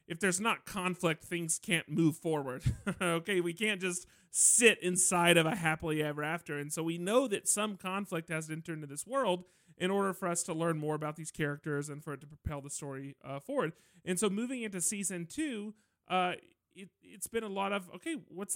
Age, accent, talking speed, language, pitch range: 30-49, American, 210 wpm, English, 165-210 Hz